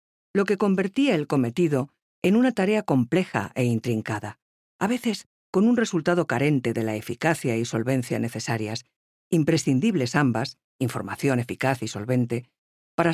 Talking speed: 135 wpm